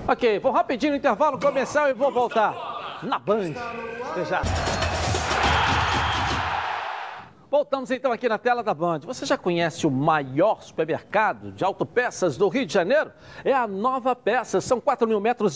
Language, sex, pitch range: Portuguese, male, 195-275 Hz